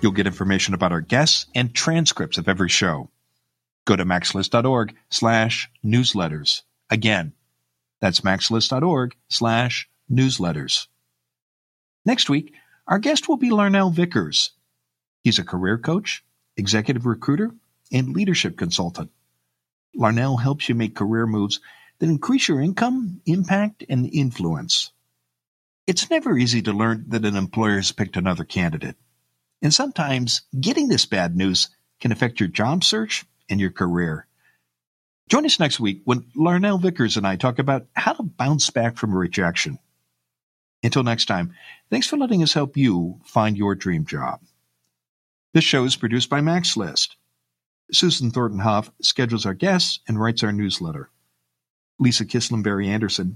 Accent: American